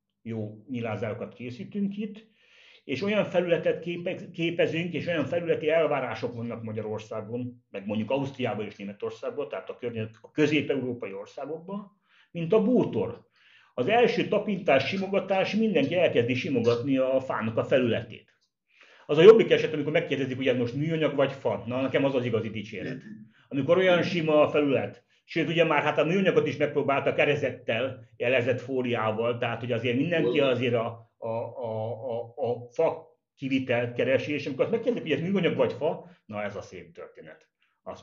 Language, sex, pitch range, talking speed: Hungarian, male, 115-170 Hz, 160 wpm